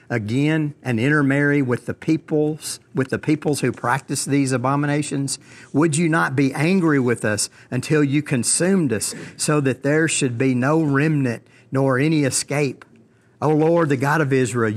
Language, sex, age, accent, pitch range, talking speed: English, male, 50-69, American, 120-145 Hz, 165 wpm